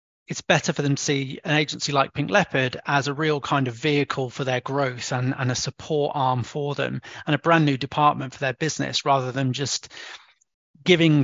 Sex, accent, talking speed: male, British, 210 wpm